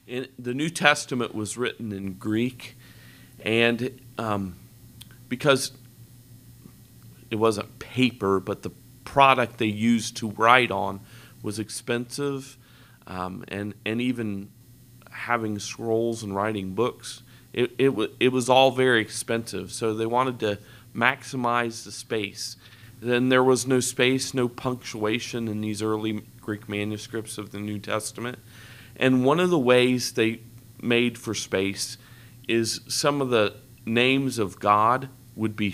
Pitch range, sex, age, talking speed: 105-125 Hz, male, 40-59, 140 wpm